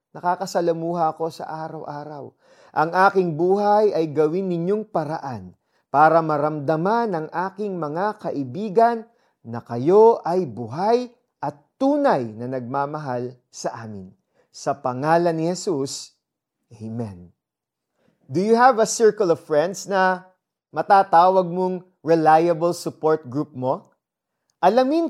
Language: Filipino